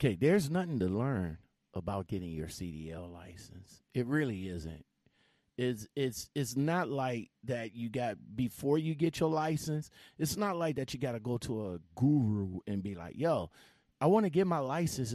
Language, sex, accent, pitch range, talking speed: English, male, American, 115-155 Hz, 185 wpm